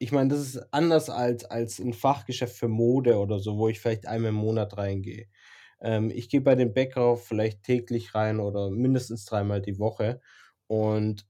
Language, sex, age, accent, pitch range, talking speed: German, male, 20-39, German, 105-125 Hz, 180 wpm